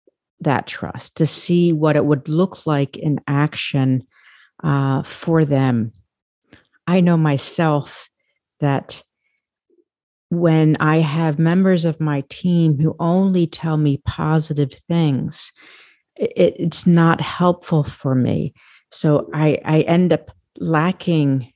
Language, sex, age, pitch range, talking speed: English, female, 50-69, 140-160 Hz, 115 wpm